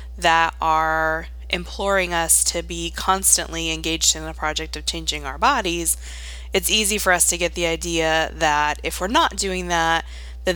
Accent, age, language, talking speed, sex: American, 20-39, English, 170 wpm, female